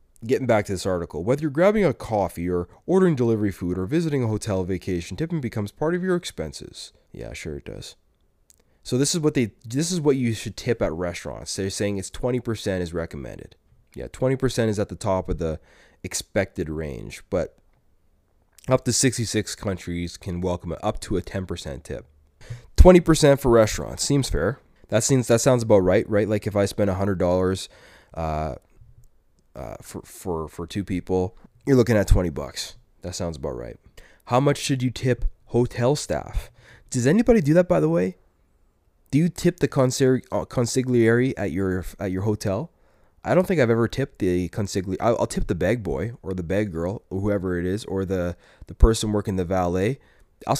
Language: English